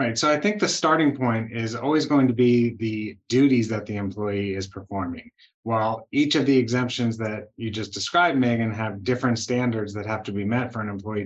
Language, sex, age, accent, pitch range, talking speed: English, male, 30-49, American, 100-120 Hz, 215 wpm